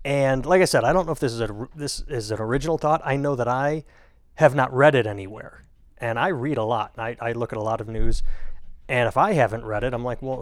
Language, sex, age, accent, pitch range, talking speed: English, male, 30-49, American, 105-130 Hz, 270 wpm